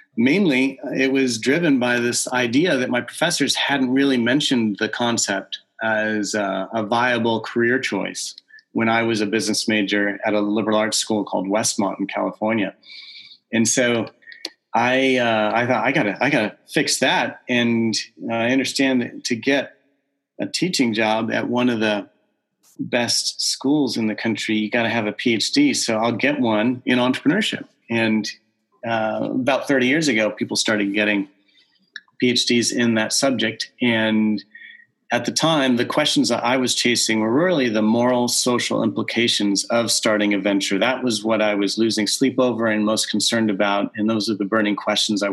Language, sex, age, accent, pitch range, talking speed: English, male, 30-49, American, 105-125 Hz, 175 wpm